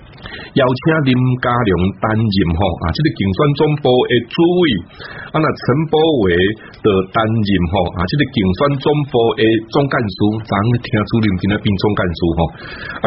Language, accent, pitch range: Chinese, Malaysian, 95-145 Hz